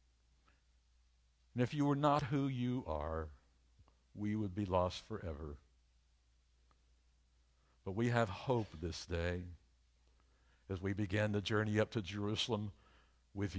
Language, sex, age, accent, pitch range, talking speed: English, male, 60-79, American, 65-105 Hz, 125 wpm